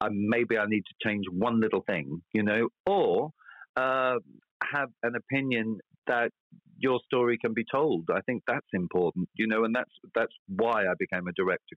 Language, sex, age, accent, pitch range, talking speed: English, male, 40-59, British, 95-120 Hz, 185 wpm